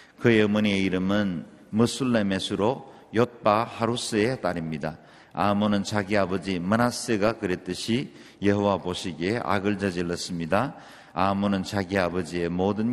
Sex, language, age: male, Korean, 50-69